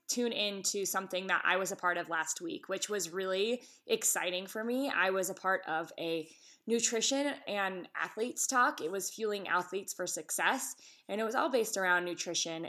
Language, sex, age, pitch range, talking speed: English, female, 20-39, 175-205 Hz, 190 wpm